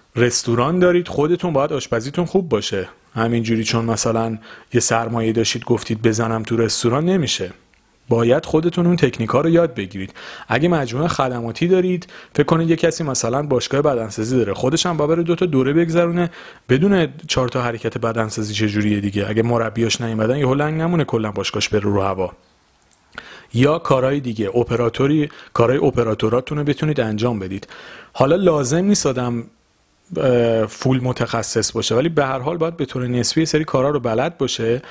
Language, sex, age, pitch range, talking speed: Persian, male, 40-59, 115-150 Hz, 160 wpm